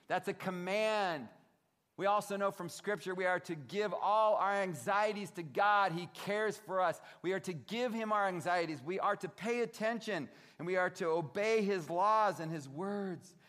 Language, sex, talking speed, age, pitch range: English, male, 190 wpm, 40-59, 150-200 Hz